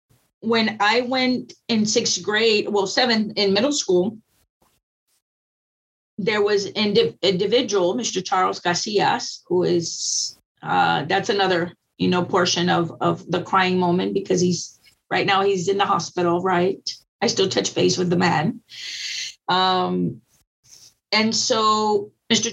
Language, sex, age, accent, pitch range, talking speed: English, female, 30-49, American, 185-230 Hz, 135 wpm